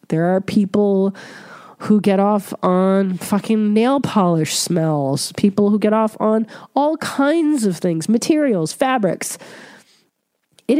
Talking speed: 130 wpm